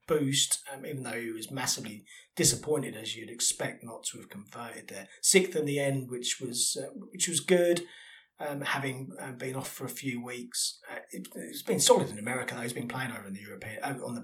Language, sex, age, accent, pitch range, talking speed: English, male, 30-49, British, 115-155 Hz, 225 wpm